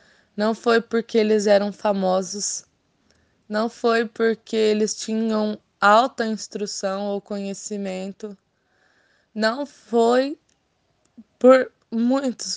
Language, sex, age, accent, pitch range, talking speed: Portuguese, female, 10-29, Brazilian, 195-235 Hz, 90 wpm